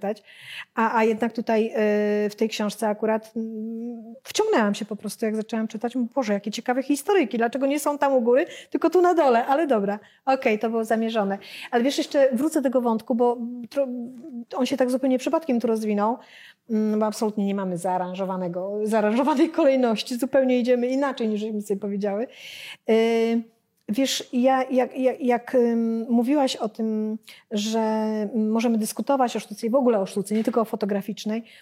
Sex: female